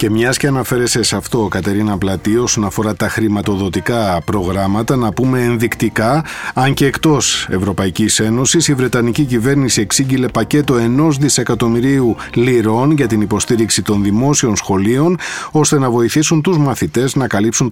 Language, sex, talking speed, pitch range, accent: Greek, male, 140 wpm, 105-140 Hz, native